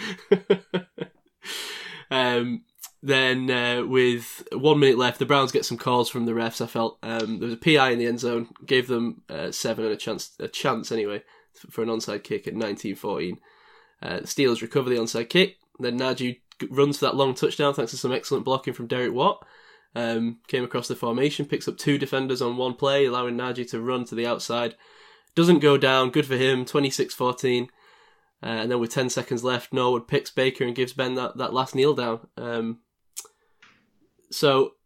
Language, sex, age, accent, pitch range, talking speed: English, male, 10-29, British, 115-145 Hz, 185 wpm